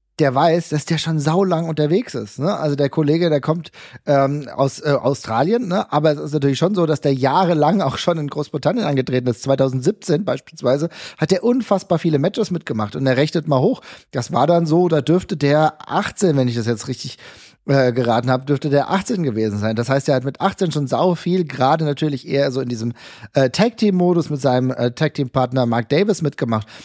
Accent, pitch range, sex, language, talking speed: German, 135-170 Hz, male, German, 205 wpm